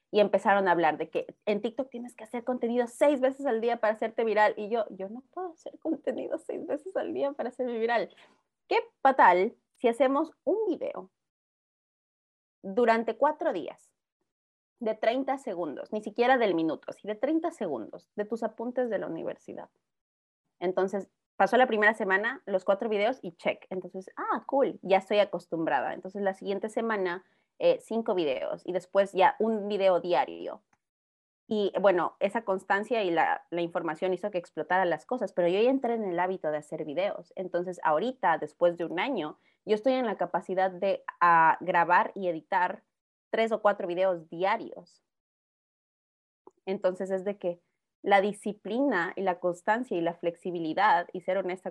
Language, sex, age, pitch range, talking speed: Spanish, female, 30-49, 180-235 Hz, 170 wpm